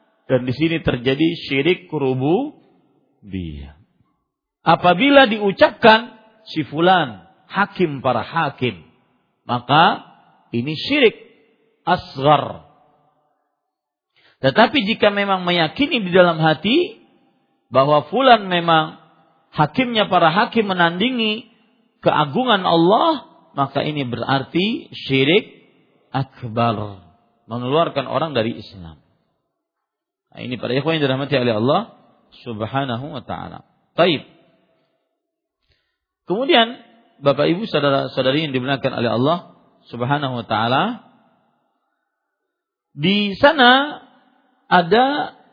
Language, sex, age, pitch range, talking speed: Malay, male, 50-69, 140-225 Hz, 90 wpm